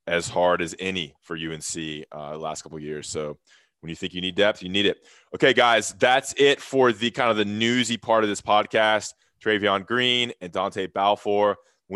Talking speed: 205 wpm